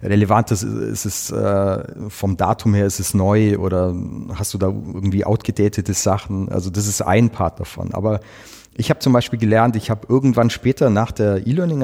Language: English